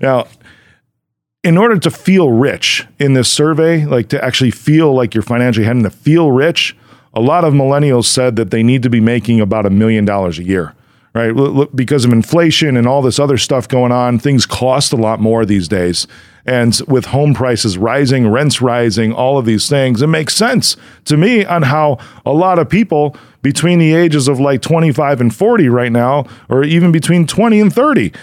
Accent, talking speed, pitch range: American, 200 wpm, 120-160 Hz